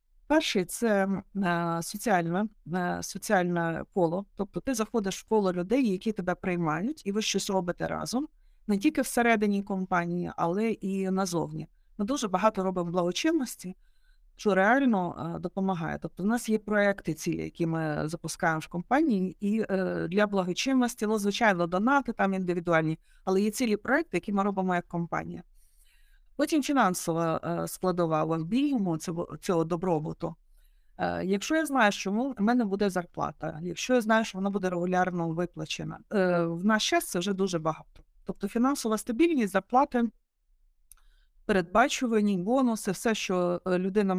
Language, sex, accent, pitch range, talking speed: Ukrainian, female, native, 175-225 Hz, 140 wpm